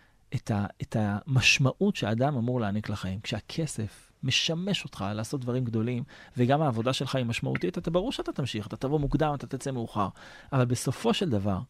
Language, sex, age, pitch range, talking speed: Hebrew, male, 30-49, 110-140 Hz, 165 wpm